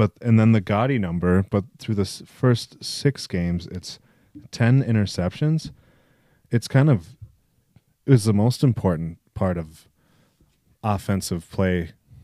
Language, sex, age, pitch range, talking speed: English, male, 30-49, 90-120 Hz, 130 wpm